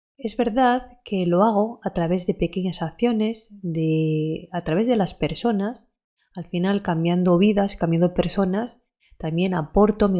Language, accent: Spanish, Spanish